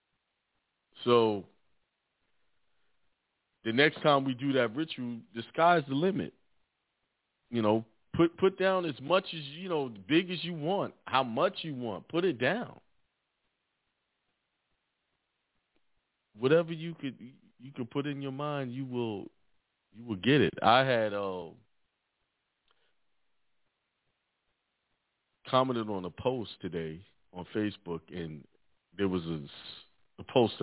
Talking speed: 125 wpm